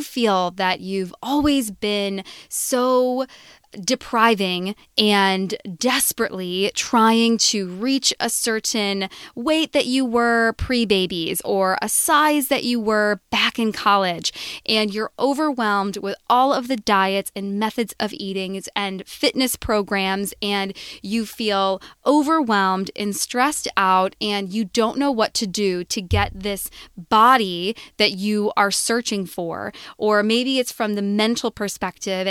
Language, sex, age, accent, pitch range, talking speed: English, female, 20-39, American, 195-245 Hz, 135 wpm